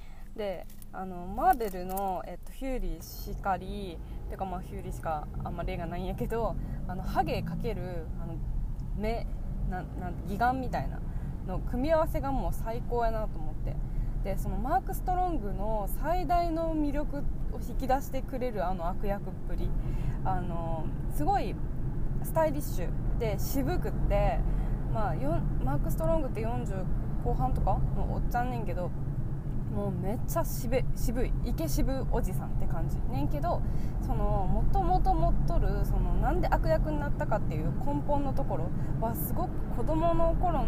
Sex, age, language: female, 20-39, Japanese